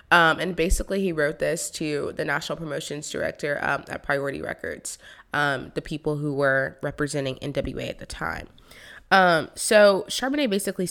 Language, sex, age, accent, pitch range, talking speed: English, female, 20-39, American, 150-180 Hz, 160 wpm